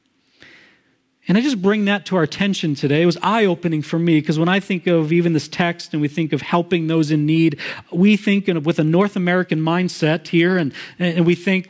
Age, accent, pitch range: 40-59, American, 145-190 Hz